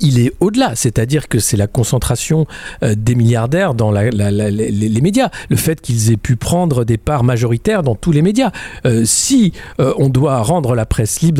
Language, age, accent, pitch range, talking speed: French, 50-69, French, 125-175 Hz, 205 wpm